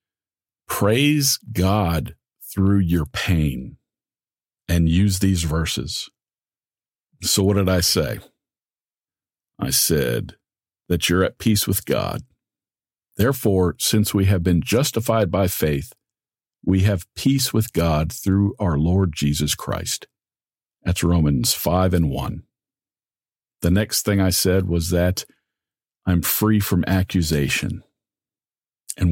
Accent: American